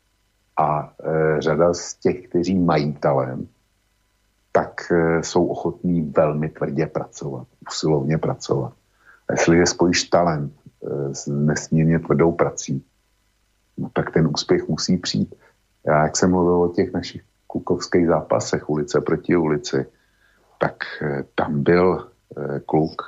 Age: 50-69